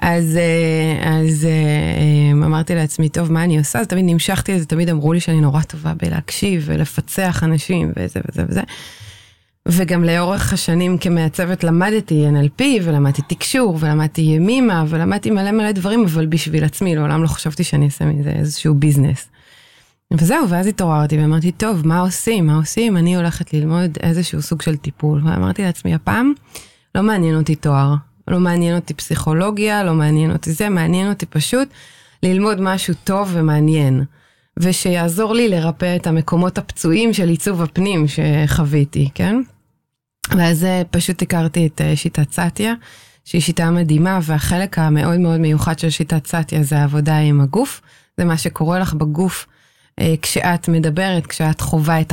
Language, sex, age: Hebrew, female, 30-49